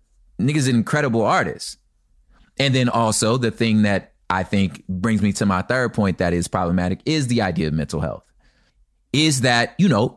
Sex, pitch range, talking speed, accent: male, 95-130 Hz, 190 wpm, American